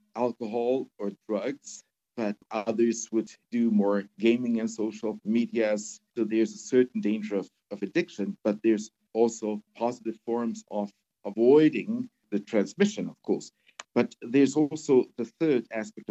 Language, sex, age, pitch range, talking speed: English, male, 50-69, 110-140 Hz, 140 wpm